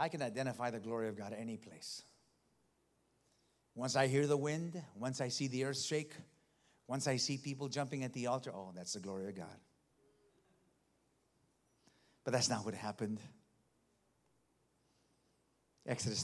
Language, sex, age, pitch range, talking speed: English, male, 50-69, 105-135 Hz, 150 wpm